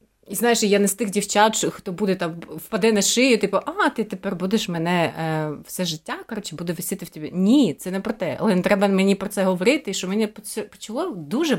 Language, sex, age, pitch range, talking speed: Ukrainian, female, 30-49, 175-225 Hz, 225 wpm